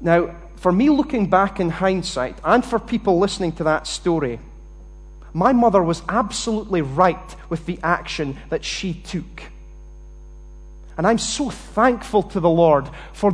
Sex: male